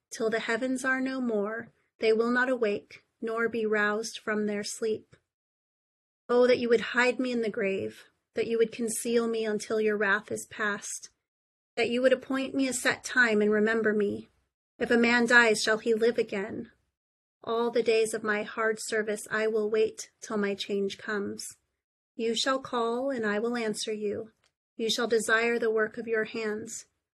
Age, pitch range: 30-49, 215-235 Hz